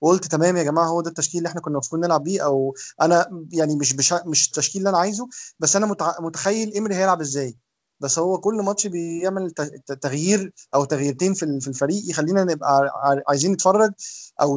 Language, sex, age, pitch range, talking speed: Arabic, male, 20-39, 140-185 Hz, 175 wpm